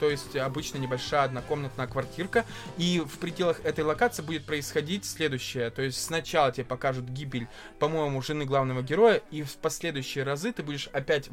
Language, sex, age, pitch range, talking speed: Russian, male, 20-39, 135-165 Hz, 165 wpm